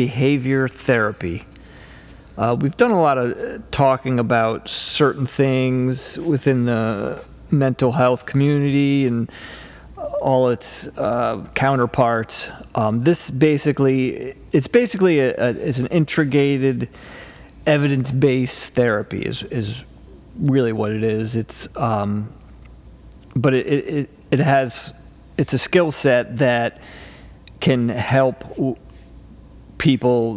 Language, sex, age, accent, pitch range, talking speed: English, male, 40-59, American, 115-140 Hz, 115 wpm